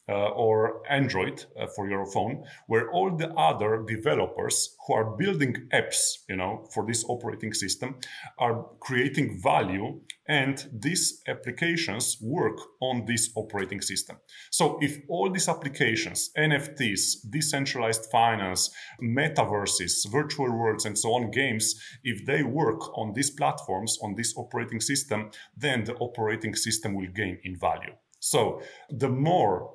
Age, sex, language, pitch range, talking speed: 30-49, male, English, 105-135 Hz, 140 wpm